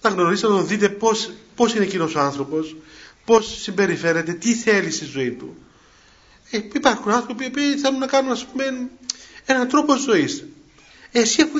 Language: Greek